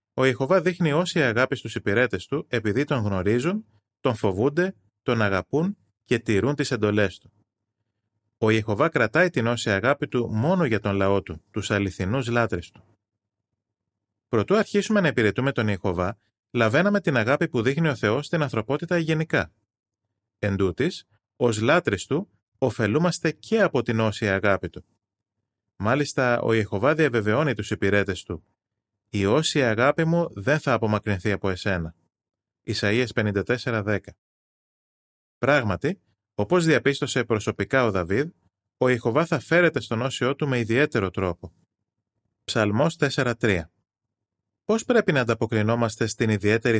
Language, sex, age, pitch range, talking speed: Greek, male, 30-49, 105-135 Hz, 130 wpm